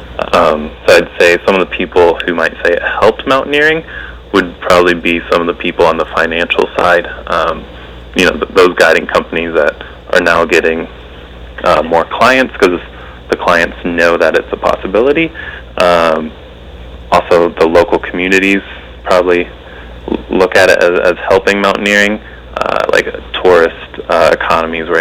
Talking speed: 165 wpm